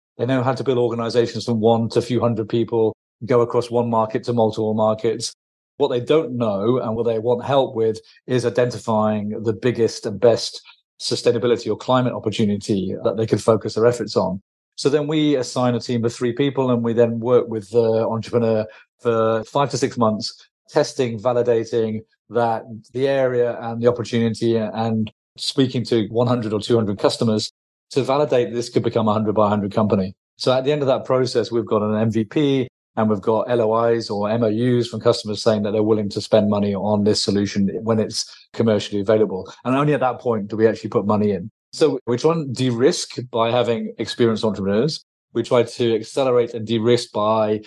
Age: 40-59